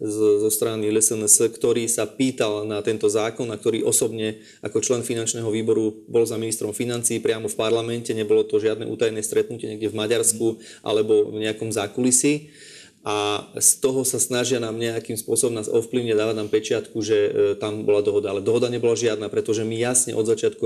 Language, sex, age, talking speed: Slovak, male, 30-49, 175 wpm